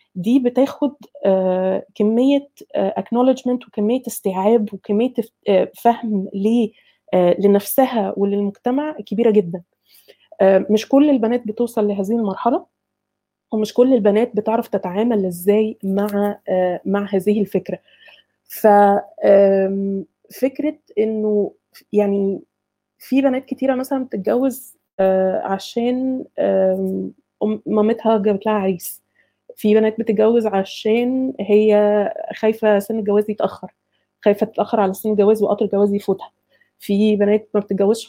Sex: female